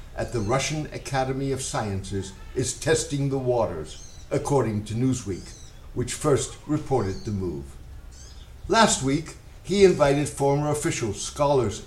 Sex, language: male, English